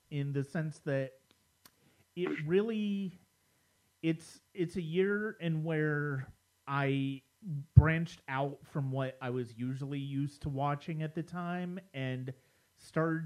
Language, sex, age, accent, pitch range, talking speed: English, male, 30-49, American, 130-165 Hz, 125 wpm